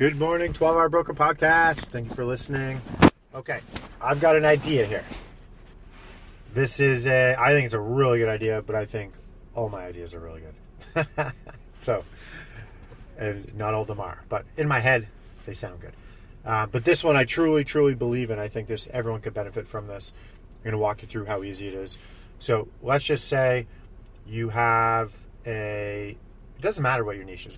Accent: American